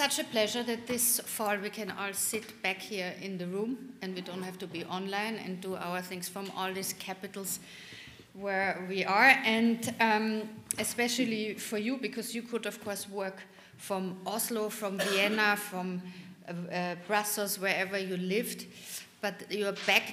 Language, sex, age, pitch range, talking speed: German, female, 50-69, 185-215 Hz, 175 wpm